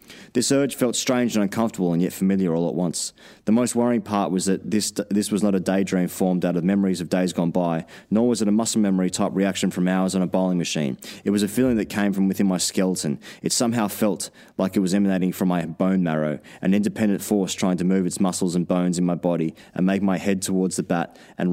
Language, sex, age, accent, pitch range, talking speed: English, male, 20-39, Australian, 90-105 Hz, 245 wpm